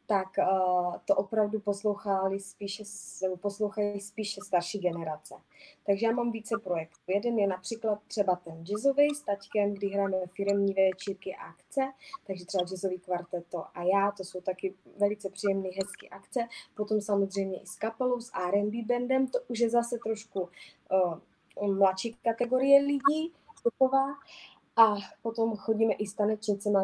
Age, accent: 20-39, native